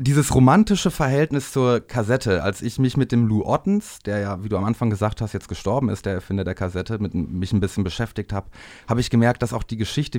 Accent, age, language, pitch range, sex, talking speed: German, 30-49, German, 100-125 Hz, male, 235 wpm